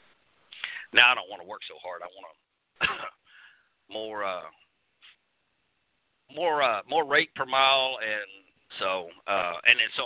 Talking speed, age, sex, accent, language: 150 wpm, 50-69, male, American, English